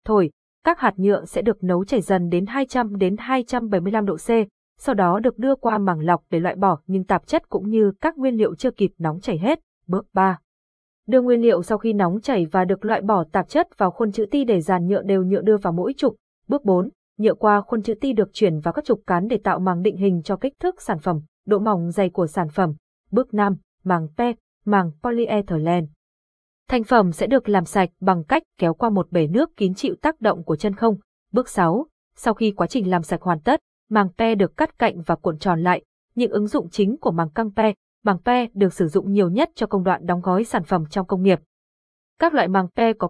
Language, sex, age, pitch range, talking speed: Vietnamese, female, 20-39, 180-230 Hz, 235 wpm